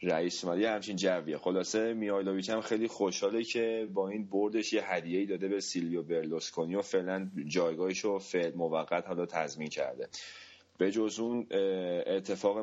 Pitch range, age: 85-95 Hz, 30-49